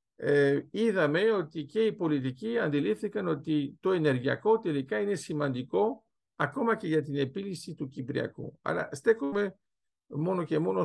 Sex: male